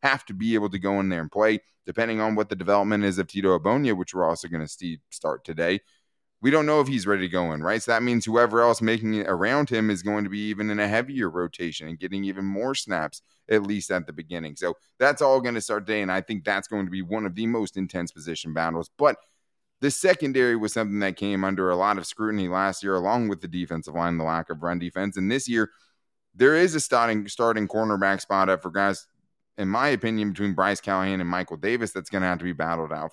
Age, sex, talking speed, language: 20-39, male, 255 wpm, English